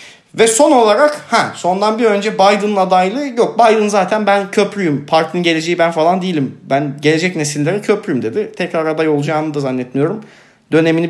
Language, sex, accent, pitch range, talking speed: Turkish, male, native, 160-210 Hz, 160 wpm